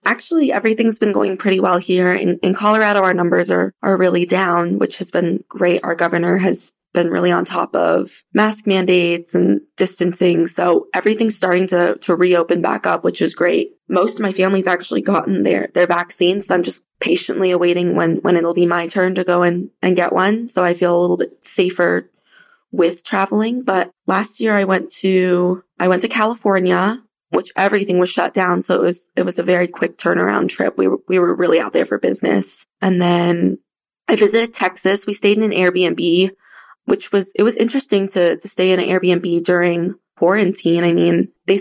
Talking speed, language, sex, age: 200 wpm, English, female, 20-39